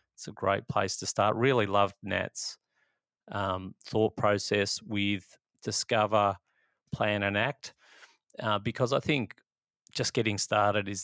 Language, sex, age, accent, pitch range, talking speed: English, male, 30-49, Australian, 100-125 Hz, 135 wpm